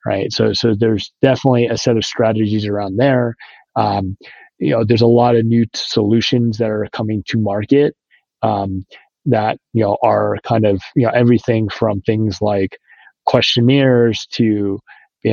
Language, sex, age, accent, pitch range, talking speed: English, male, 30-49, American, 105-120 Hz, 160 wpm